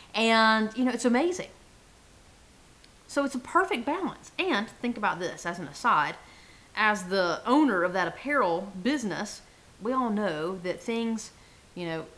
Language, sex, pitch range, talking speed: English, female, 190-265 Hz, 155 wpm